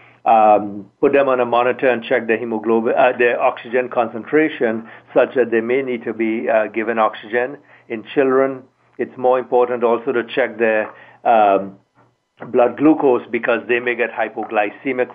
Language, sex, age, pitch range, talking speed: English, male, 60-79, 115-130 Hz, 155 wpm